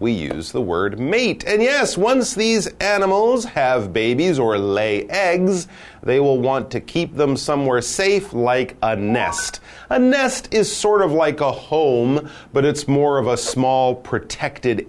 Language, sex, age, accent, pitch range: Chinese, male, 40-59, American, 105-175 Hz